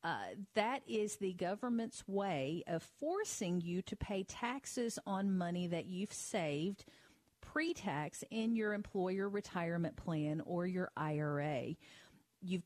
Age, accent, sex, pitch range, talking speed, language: 50-69, American, female, 165-215 Hz, 130 wpm, English